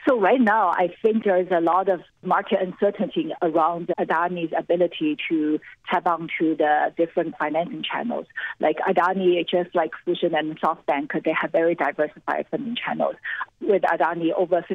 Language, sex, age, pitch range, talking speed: English, female, 50-69, 160-195 Hz, 160 wpm